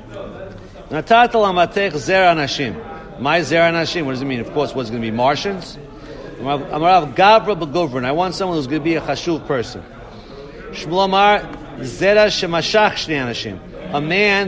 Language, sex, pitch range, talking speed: English, male, 150-190 Hz, 135 wpm